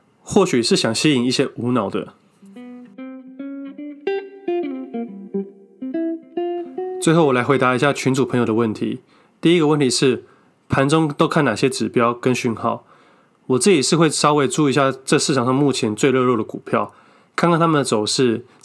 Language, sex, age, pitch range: Chinese, male, 20-39, 120-165 Hz